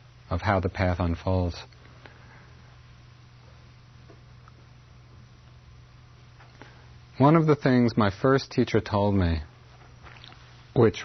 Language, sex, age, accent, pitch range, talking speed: English, male, 40-59, American, 100-125 Hz, 80 wpm